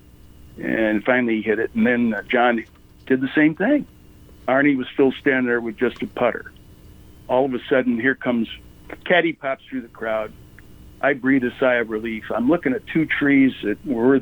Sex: male